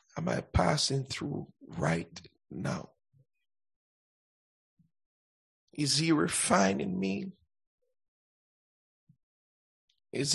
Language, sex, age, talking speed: English, male, 60-79, 65 wpm